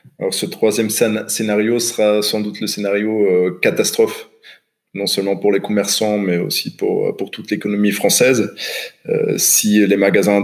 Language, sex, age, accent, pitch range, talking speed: French, male, 20-39, French, 90-110 Hz, 145 wpm